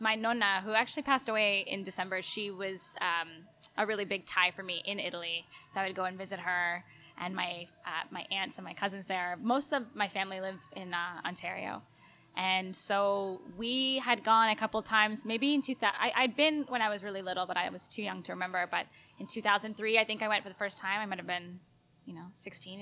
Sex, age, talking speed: female, 10-29, 230 wpm